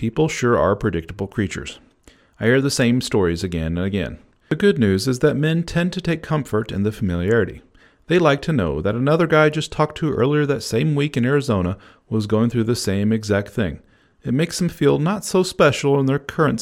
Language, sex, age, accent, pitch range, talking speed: English, male, 40-59, American, 95-140 Hz, 215 wpm